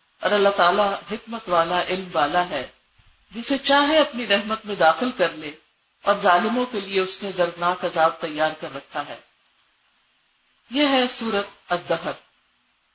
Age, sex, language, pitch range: 50-69, female, Urdu, 180-235 Hz